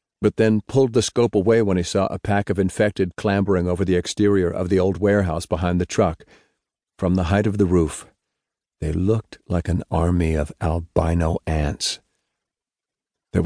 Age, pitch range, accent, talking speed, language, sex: 50-69, 90-100 Hz, American, 175 wpm, English, male